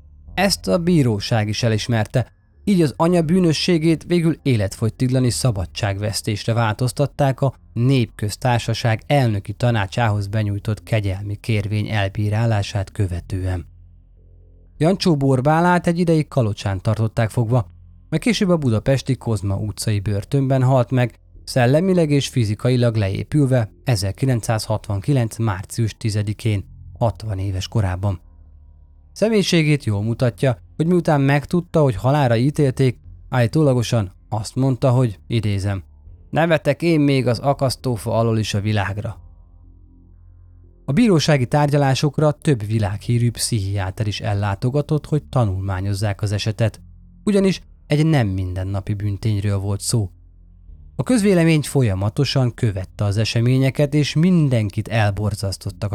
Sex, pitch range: male, 100-135 Hz